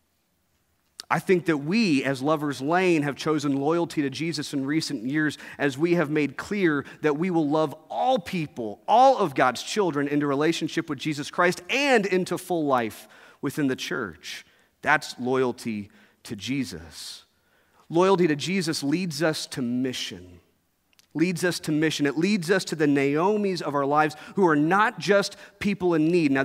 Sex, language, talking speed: male, English, 170 wpm